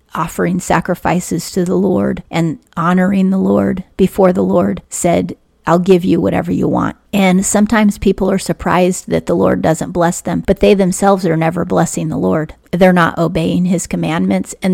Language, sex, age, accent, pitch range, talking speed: English, female, 30-49, American, 165-185 Hz, 180 wpm